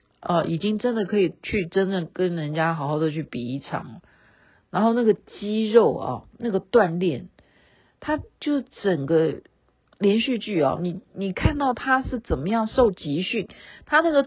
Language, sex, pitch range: Chinese, female, 165-245 Hz